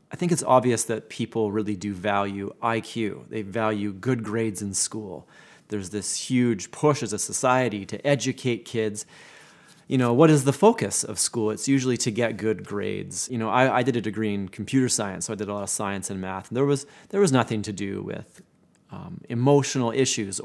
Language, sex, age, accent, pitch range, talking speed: English, male, 30-49, American, 110-135 Hz, 205 wpm